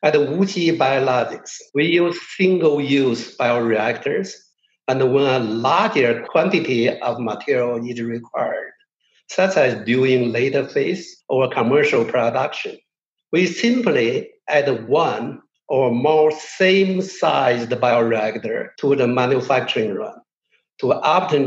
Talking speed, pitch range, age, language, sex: 105 wpm, 120-175 Hz, 60-79, English, male